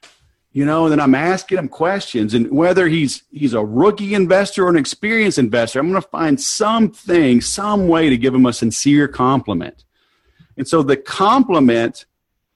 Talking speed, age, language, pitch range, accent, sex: 170 wpm, 50-69, English, 125-175 Hz, American, male